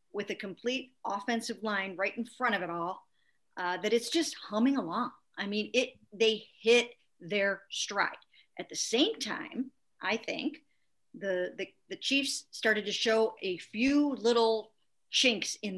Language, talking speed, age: English, 160 wpm, 50-69